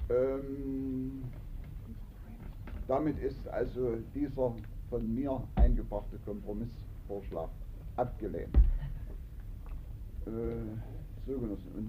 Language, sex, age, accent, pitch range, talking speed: German, male, 60-79, German, 100-125 Hz, 50 wpm